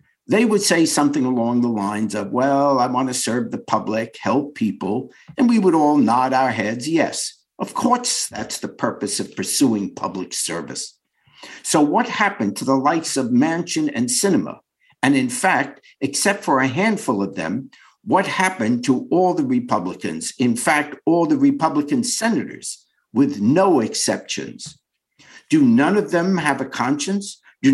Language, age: English, 60-79